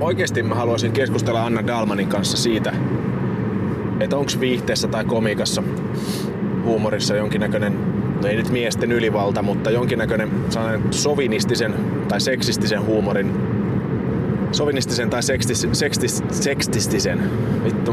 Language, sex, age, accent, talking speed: Finnish, male, 30-49, native, 105 wpm